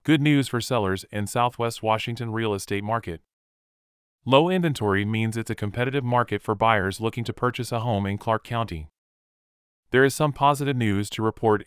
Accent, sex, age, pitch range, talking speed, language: American, male, 30-49, 100-125 Hz, 175 wpm, English